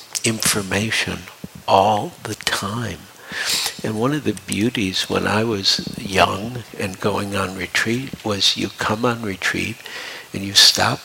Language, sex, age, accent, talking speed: English, male, 60-79, American, 135 wpm